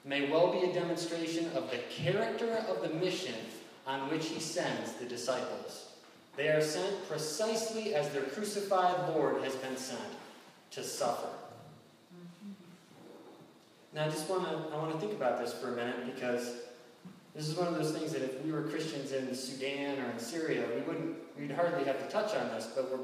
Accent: American